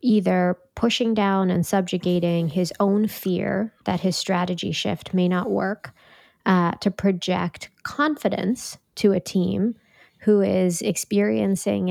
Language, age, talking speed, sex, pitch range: English, 20-39, 125 wpm, female, 180-215 Hz